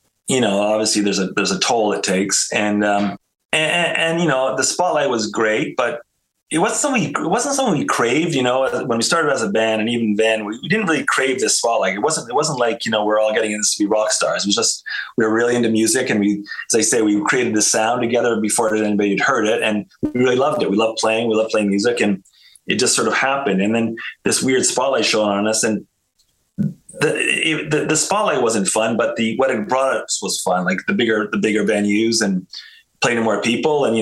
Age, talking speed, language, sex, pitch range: 30-49, 240 wpm, English, male, 105-120 Hz